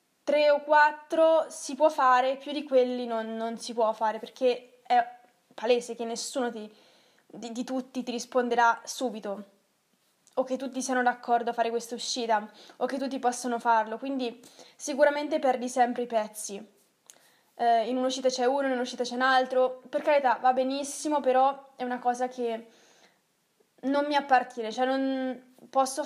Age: 20-39